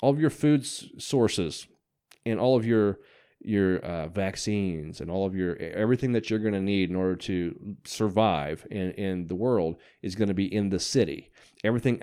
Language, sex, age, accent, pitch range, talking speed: English, male, 30-49, American, 95-120 Hz, 190 wpm